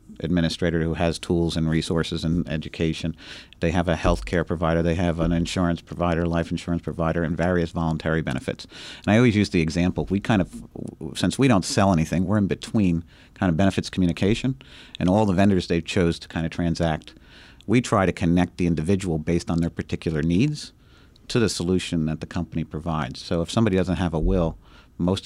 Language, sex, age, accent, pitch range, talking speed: English, male, 50-69, American, 80-95 Hz, 195 wpm